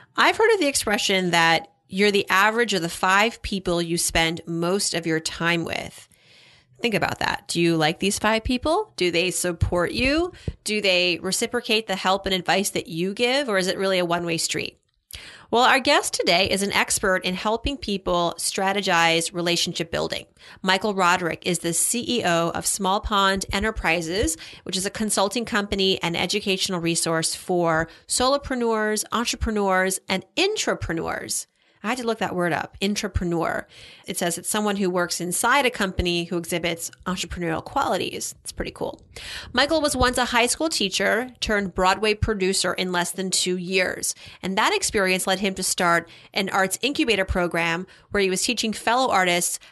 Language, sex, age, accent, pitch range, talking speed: English, female, 30-49, American, 175-215 Hz, 170 wpm